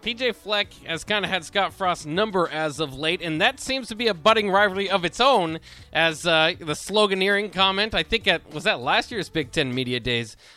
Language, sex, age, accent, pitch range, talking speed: English, male, 20-39, American, 150-185 Hz, 220 wpm